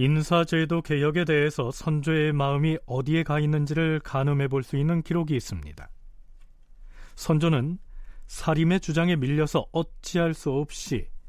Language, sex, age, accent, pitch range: Korean, male, 40-59, native, 135-170 Hz